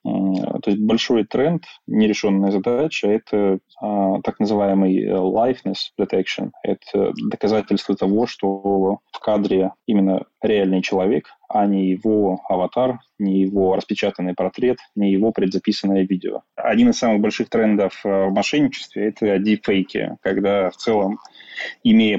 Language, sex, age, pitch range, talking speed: Russian, male, 20-39, 95-105 Hz, 130 wpm